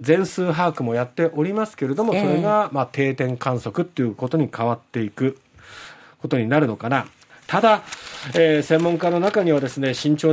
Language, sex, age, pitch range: Japanese, male, 40-59, 130-195 Hz